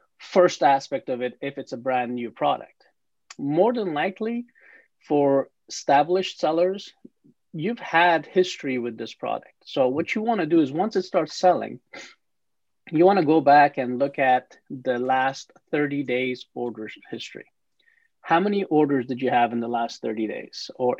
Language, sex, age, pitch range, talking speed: English, male, 30-49, 130-180 Hz, 165 wpm